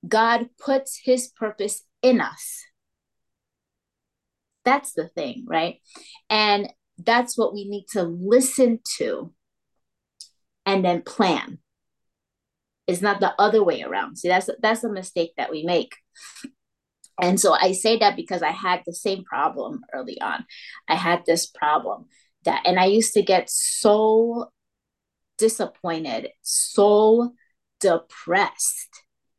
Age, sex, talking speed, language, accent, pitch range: 30-49, female, 125 wpm, English, American, 180-250 Hz